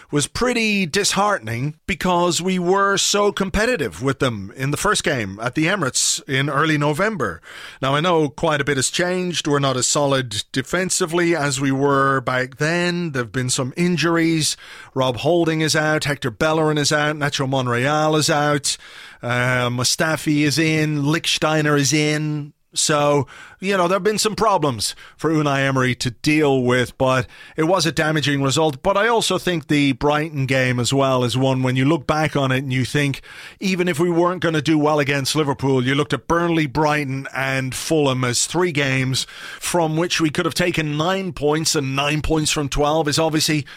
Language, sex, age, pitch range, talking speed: English, male, 30-49, 135-175 Hz, 190 wpm